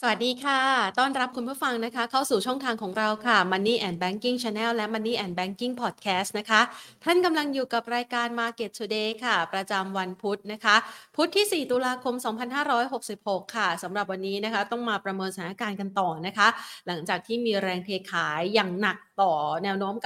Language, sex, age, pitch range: Thai, female, 30-49, 195-245 Hz